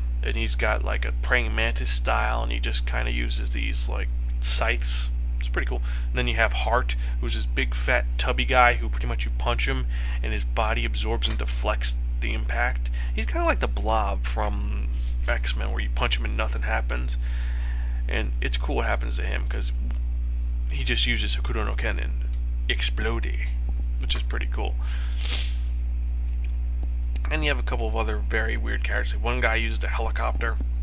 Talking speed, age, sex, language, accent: 185 wpm, 20-39, male, English, American